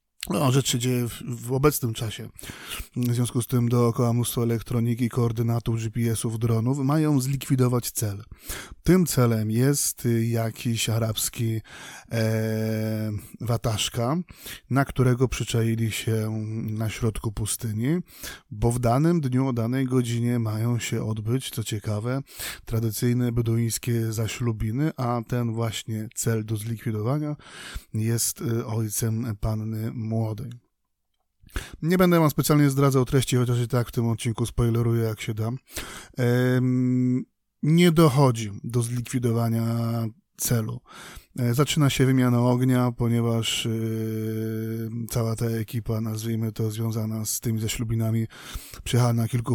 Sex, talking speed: male, 120 wpm